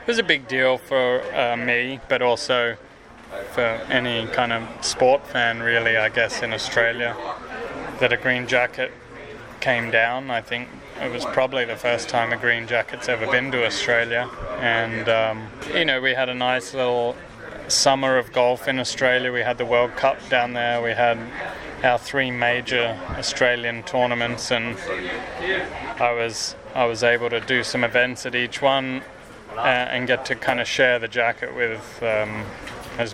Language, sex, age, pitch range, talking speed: English, male, 20-39, 115-125 Hz, 170 wpm